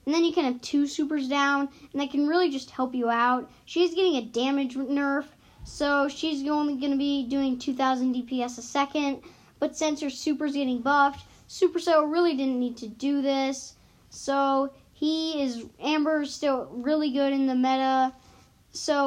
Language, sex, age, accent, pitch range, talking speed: English, female, 10-29, American, 260-295 Hz, 180 wpm